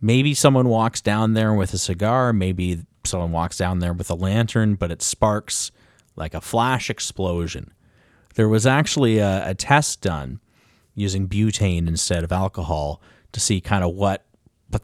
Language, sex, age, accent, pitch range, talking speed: English, male, 30-49, American, 95-120 Hz, 165 wpm